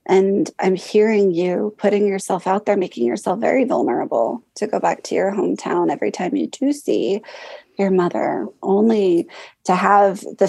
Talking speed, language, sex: 165 wpm, English, female